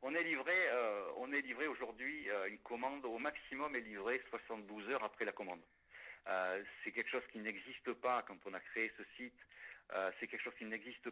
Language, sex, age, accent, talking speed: French, male, 60-79, French, 210 wpm